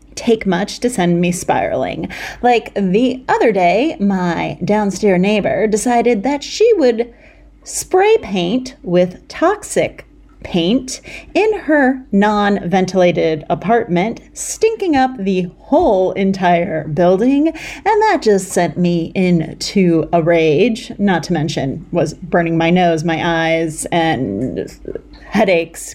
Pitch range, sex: 175-250 Hz, female